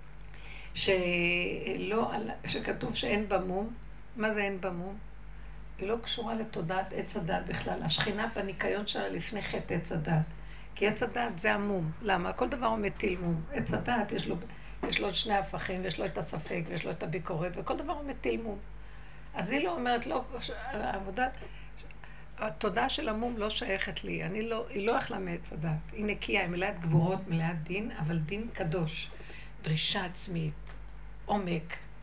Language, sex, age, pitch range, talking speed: Hebrew, female, 60-79, 170-225 Hz, 160 wpm